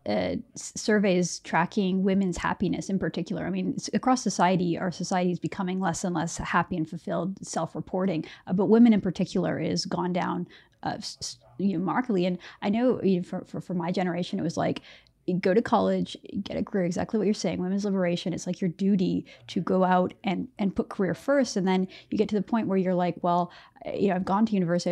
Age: 30-49